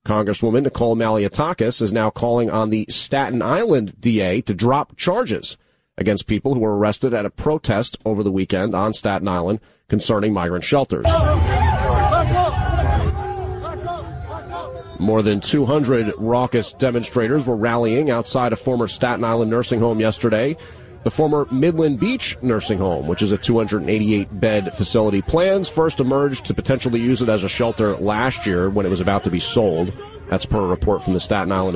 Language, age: English, 30-49